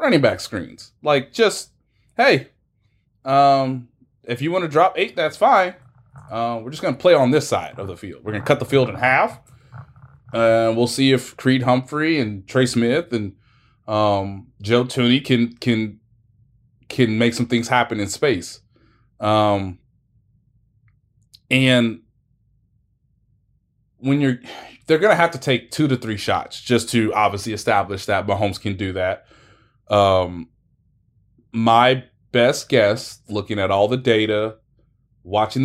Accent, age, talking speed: American, 20-39, 150 wpm